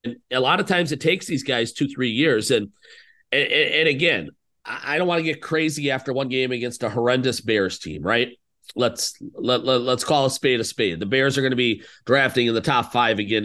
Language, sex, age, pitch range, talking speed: English, male, 40-59, 120-150 Hz, 230 wpm